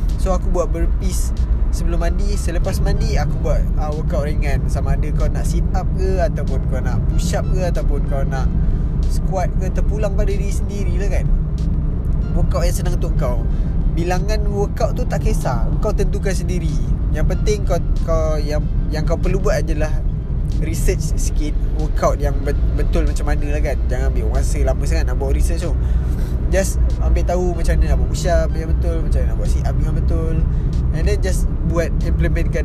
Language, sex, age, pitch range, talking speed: Malay, male, 20-39, 65-75 Hz, 190 wpm